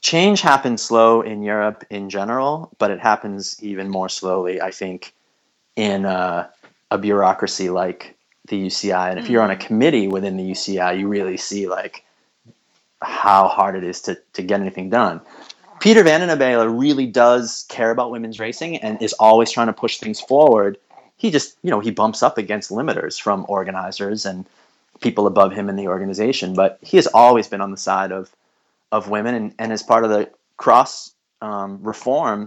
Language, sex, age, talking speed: English, male, 30-49, 180 wpm